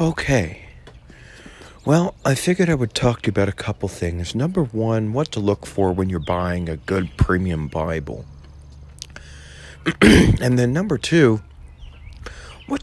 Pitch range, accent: 70-95 Hz, American